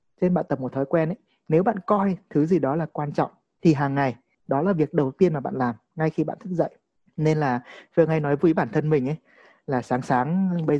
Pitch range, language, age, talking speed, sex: 140-175 Hz, Vietnamese, 20-39, 255 wpm, male